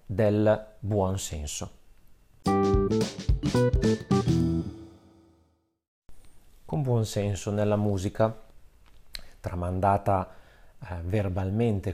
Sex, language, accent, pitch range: male, Italian, native, 95-115 Hz